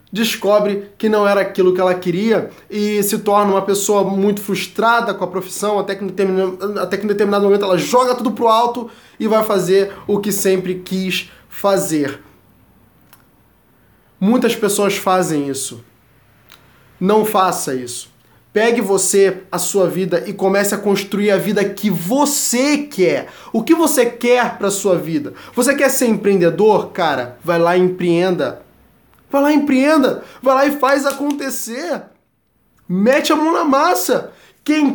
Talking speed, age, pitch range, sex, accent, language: 155 wpm, 20-39, 195-260 Hz, male, Brazilian, Portuguese